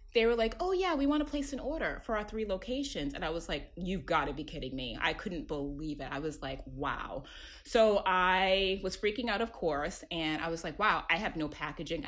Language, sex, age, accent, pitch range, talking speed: English, female, 20-39, American, 155-210 Hz, 235 wpm